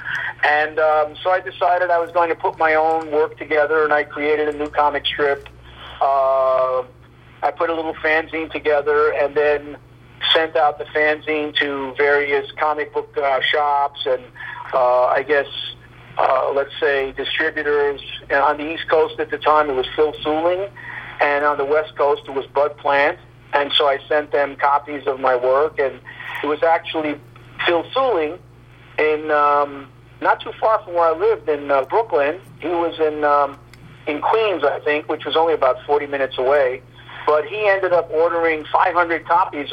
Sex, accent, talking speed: male, American, 180 wpm